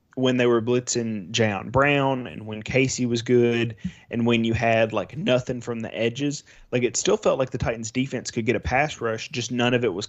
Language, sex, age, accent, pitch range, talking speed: English, male, 20-39, American, 110-125 Hz, 225 wpm